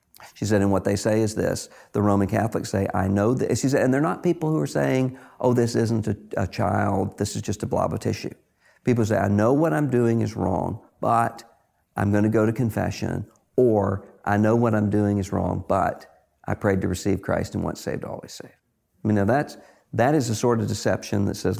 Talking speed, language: 230 wpm, English